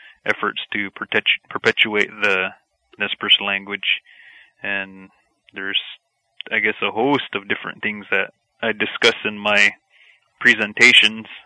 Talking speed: 115 wpm